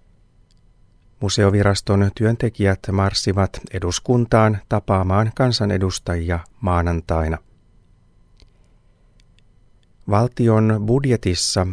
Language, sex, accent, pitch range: Finnish, male, native, 90-110 Hz